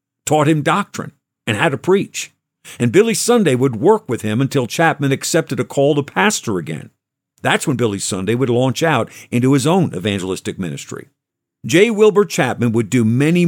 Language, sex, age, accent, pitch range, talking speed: English, male, 50-69, American, 115-155 Hz, 180 wpm